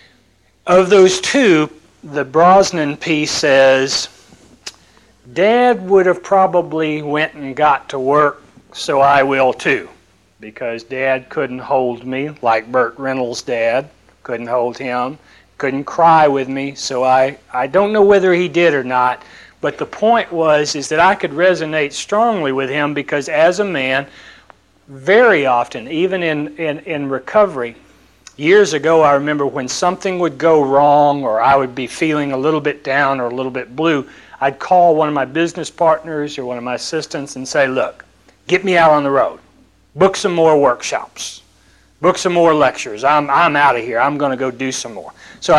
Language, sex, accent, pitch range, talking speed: English, male, American, 130-170 Hz, 175 wpm